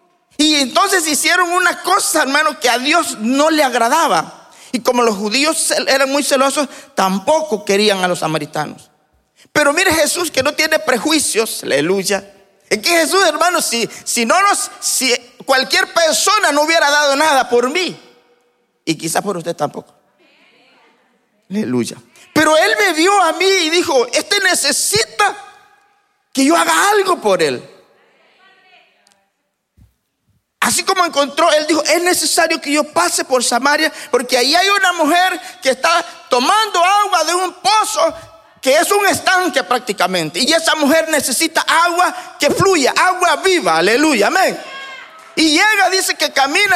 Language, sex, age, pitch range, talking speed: Spanish, male, 40-59, 240-350 Hz, 150 wpm